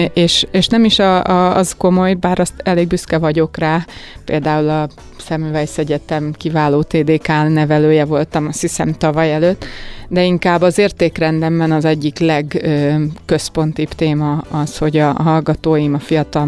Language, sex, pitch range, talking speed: Hungarian, female, 150-180 Hz, 140 wpm